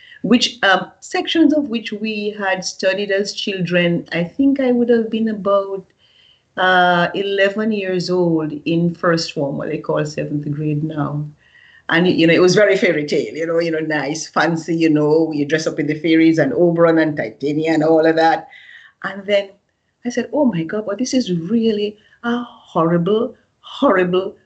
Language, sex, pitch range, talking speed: English, female, 160-225 Hz, 180 wpm